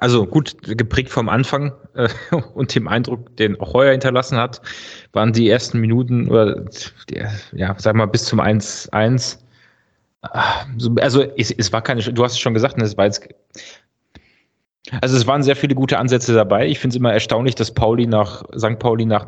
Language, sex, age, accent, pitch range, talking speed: German, male, 30-49, German, 110-125 Hz, 170 wpm